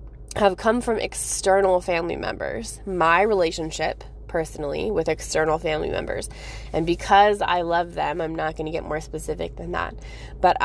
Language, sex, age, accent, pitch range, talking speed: English, female, 20-39, American, 155-180 Hz, 160 wpm